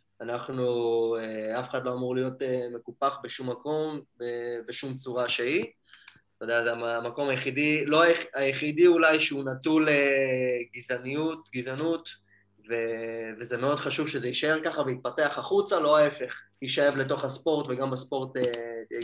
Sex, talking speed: male, 130 wpm